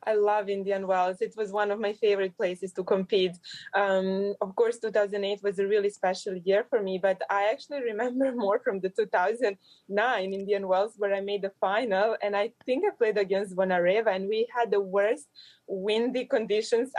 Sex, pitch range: female, 195-220 Hz